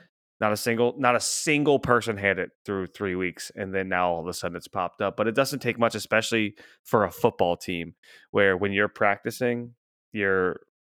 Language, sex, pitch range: English, male, 85-105 Hz